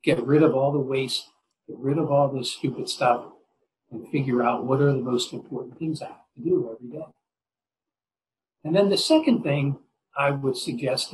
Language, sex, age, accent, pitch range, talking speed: English, male, 60-79, American, 135-160 Hz, 195 wpm